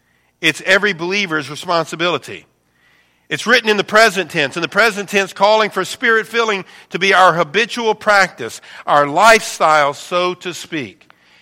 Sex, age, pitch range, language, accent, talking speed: male, 50-69, 125-200 Hz, English, American, 145 wpm